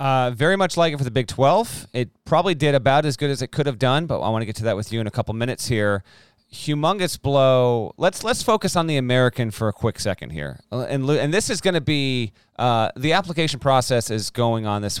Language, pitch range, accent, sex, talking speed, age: English, 105-135 Hz, American, male, 250 wpm, 40-59